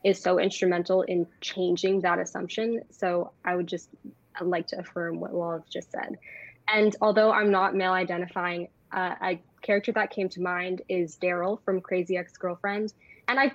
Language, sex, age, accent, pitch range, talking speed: English, female, 10-29, American, 175-195 Hz, 170 wpm